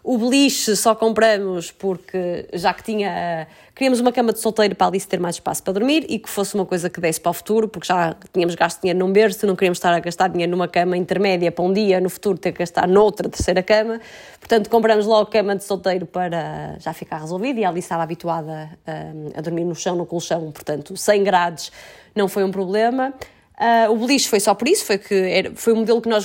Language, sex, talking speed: Portuguese, female, 230 wpm